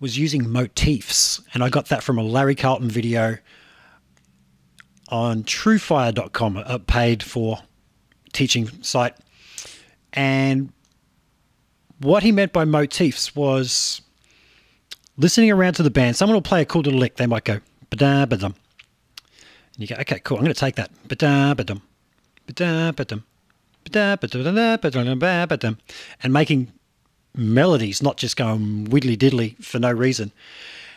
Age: 40-59